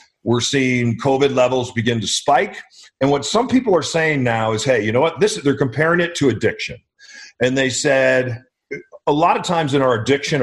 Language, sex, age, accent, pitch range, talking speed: English, male, 40-59, American, 125-170 Hz, 205 wpm